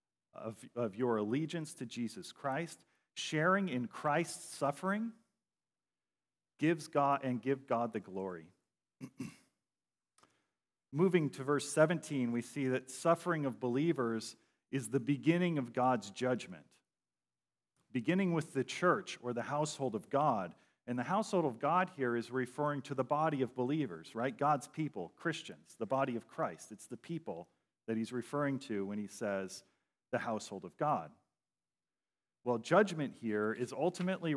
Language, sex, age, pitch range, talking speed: English, male, 40-59, 125-165 Hz, 145 wpm